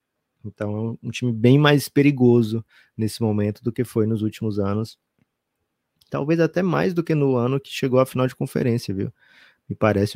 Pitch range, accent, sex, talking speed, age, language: 100-125 Hz, Brazilian, male, 185 wpm, 20-39, Portuguese